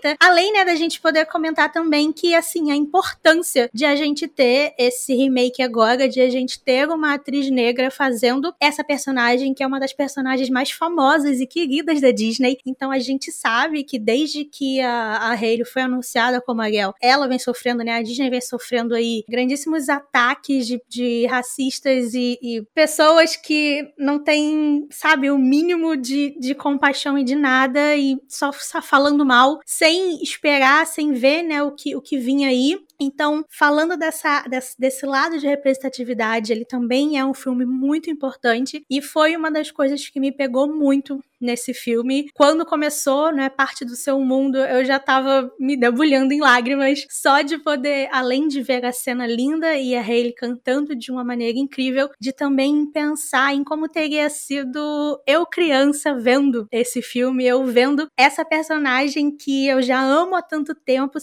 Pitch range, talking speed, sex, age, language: 255-300 Hz, 175 wpm, female, 20-39, Portuguese